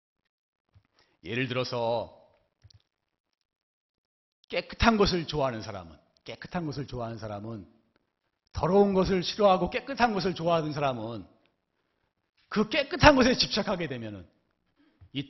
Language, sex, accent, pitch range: Korean, male, native, 115-195 Hz